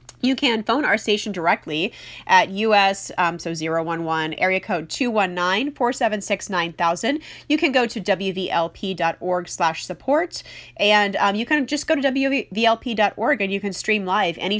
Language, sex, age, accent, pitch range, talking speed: English, female, 30-49, American, 180-240 Hz, 145 wpm